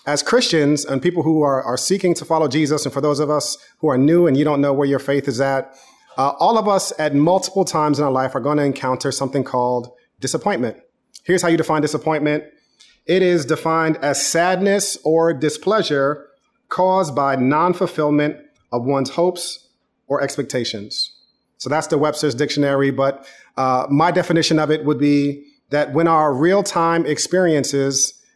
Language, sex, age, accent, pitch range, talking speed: English, male, 40-59, American, 140-170 Hz, 175 wpm